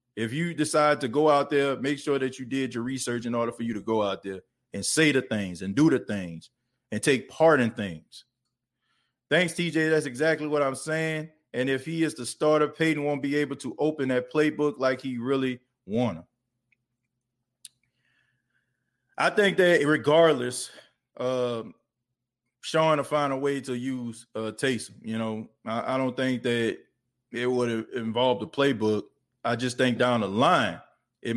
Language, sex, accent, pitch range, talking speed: English, male, American, 125-160 Hz, 180 wpm